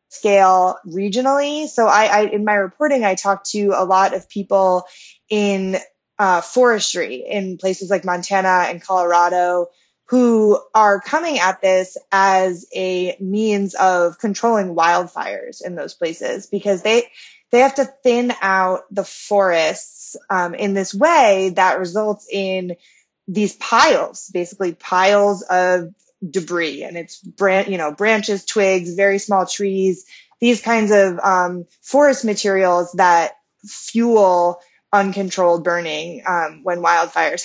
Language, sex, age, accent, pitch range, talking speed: English, female, 20-39, American, 180-215 Hz, 135 wpm